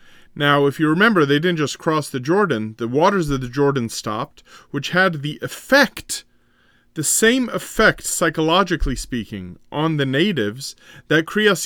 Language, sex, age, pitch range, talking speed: English, male, 30-49, 135-190 Hz, 155 wpm